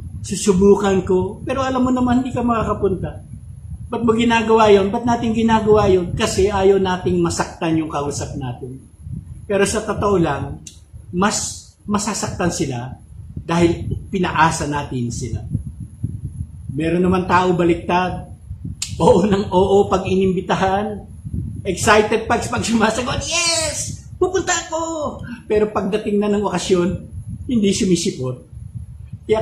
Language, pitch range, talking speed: English, 125-205 Hz, 110 wpm